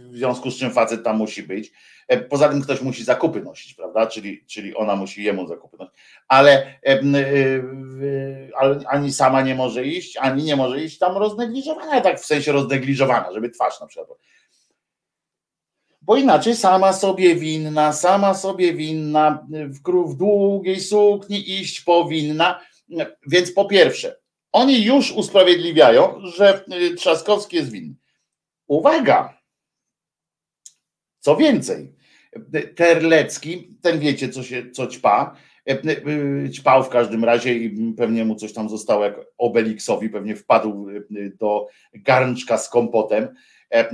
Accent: native